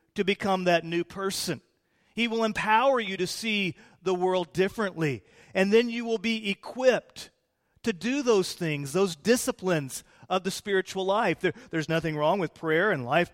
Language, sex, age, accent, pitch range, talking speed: English, male, 40-59, American, 155-200 Hz, 165 wpm